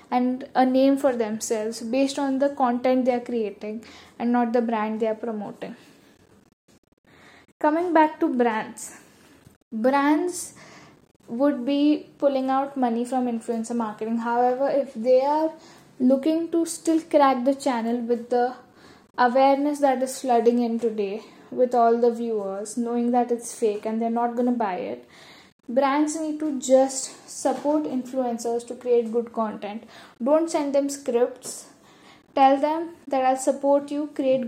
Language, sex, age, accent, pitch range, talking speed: English, female, 10-29, Indian, 240-285 Hz, 150 wpm